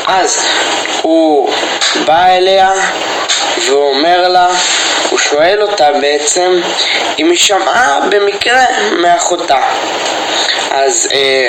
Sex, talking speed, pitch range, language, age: male, 90 wpm, 135-180 Hz, Hebrew, 20-39